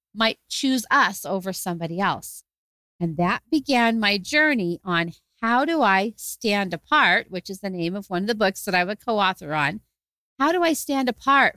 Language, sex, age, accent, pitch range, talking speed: English, female, 40-59, American, 195-255 Hz, 185 wpm